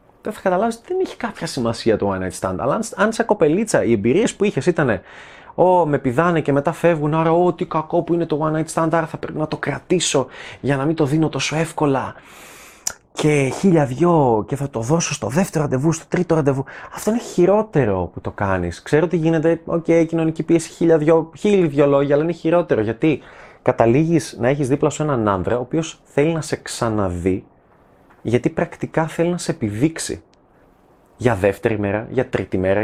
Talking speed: 200 wpm